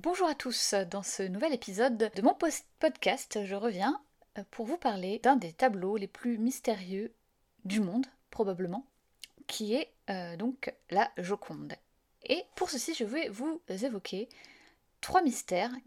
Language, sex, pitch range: French, female, 195-260 Hz